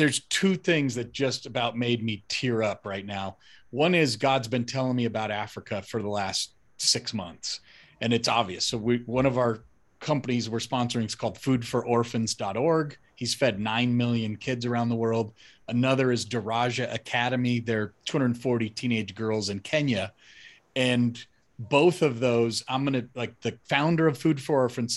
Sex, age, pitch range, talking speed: male, 40-59, 115-140 Hz, 170 wpm